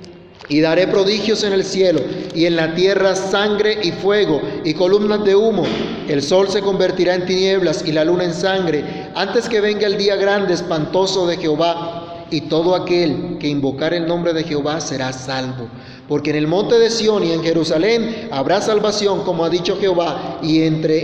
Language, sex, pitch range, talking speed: Spanish, male, 160-210 Hz, 185 wpm